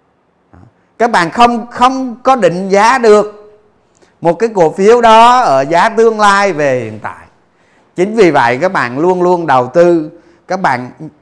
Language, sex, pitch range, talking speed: Vietnamese, male, 130-200 Hz, 165 wpm